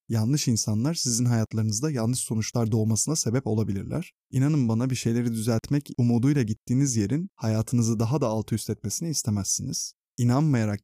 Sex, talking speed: male, 140 wpm